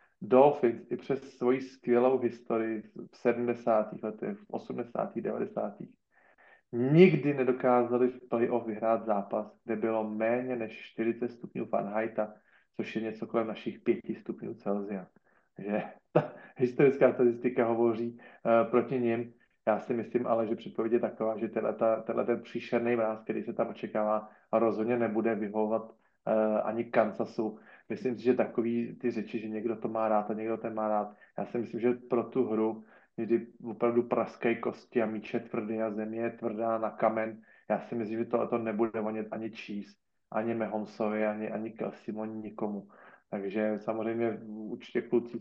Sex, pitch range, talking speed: male, 110-120 Hz, 155 wpm